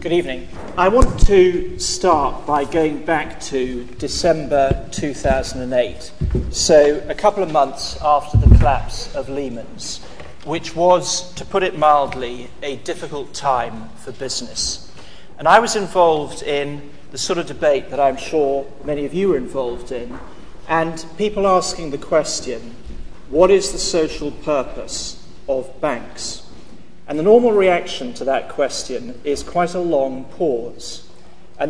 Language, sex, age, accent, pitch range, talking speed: English, male, 40-59, British, 135-180 Hz, 145 wpm